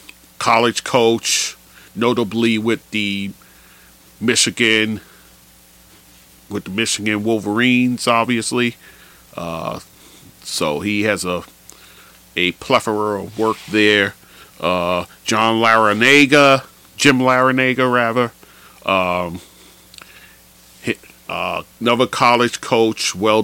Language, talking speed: English, 85 wpm